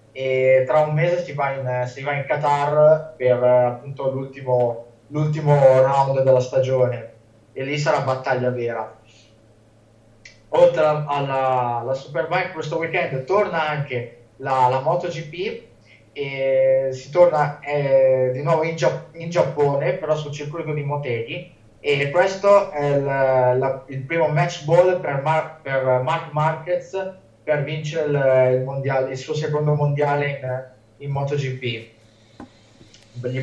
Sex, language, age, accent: male, Italian, 20-39, native